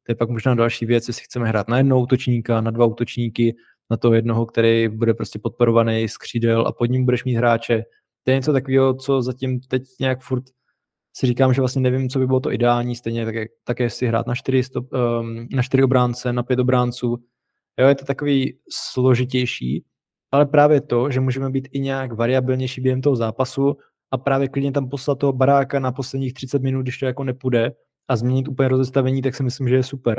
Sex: male